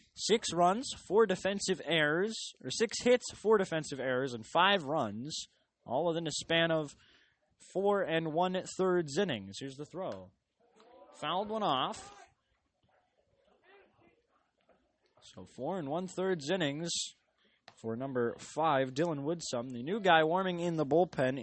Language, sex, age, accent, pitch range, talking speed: English, male, 20-39, American, 135-205 Hz, 135 wpm